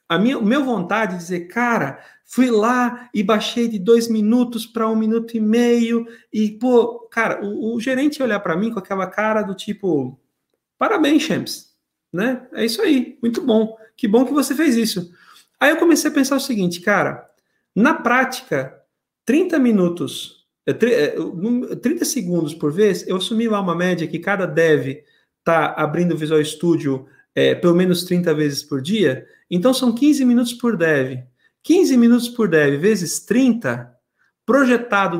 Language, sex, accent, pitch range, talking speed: Portuguese, male, Brazilian, 175-250 Hz, 165 wpm